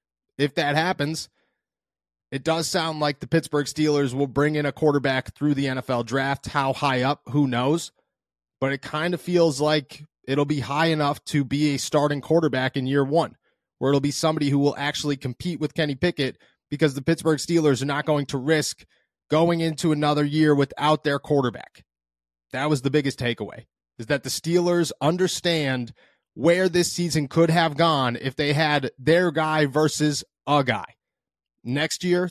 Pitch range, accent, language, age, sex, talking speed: 135-160 Hz, American, English, 30-49, male, 175 wpm